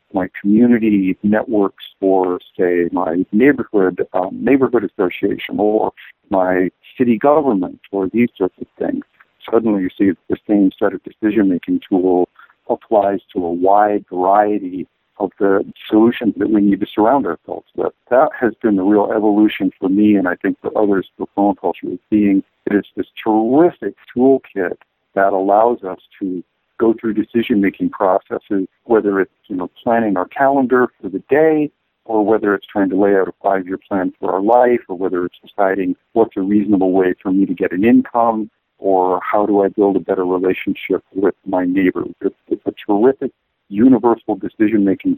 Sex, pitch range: male, 95-115 Hz